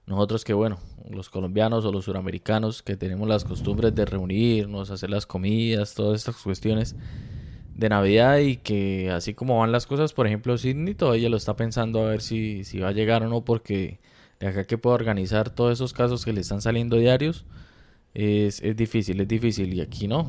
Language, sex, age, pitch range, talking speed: Spanish, male, 20-39, 105-125 Hz, 200 wpm